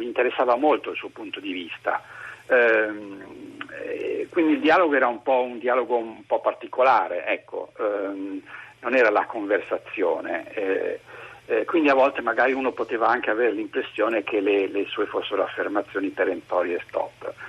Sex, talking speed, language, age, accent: male, 155 wpm, Italian, 50-69, native